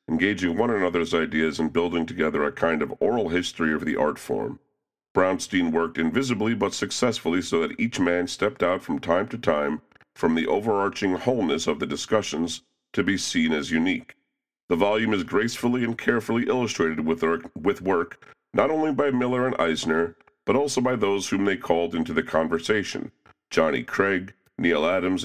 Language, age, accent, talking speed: English, 50-69, American, 170 wpm